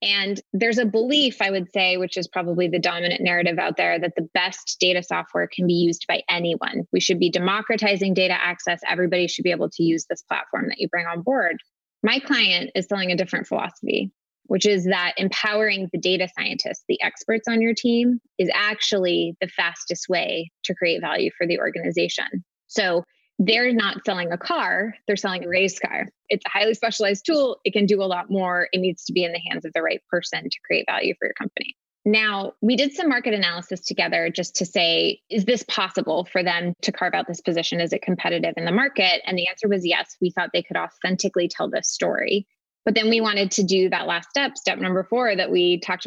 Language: English